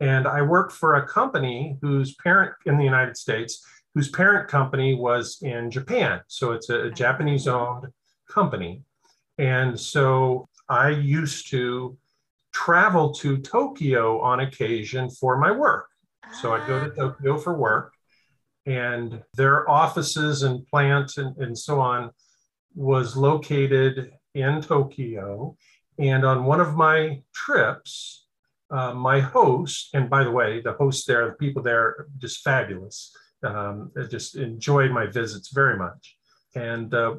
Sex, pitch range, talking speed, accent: male, 125-150 Hz, 140 wpm, American